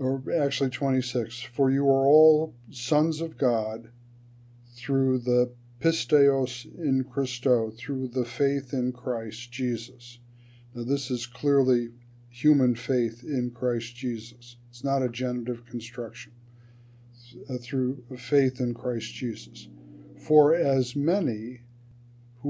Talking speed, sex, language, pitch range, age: 120 wpm, male, English, 120-135 Hz, 50-69